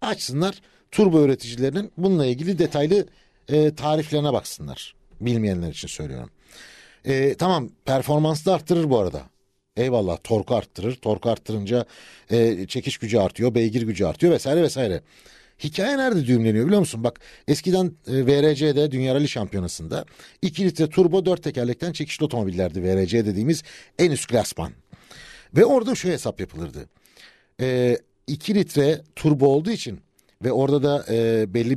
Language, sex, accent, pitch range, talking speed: Turkish, male, native, 110-155 Hz, 140 wpm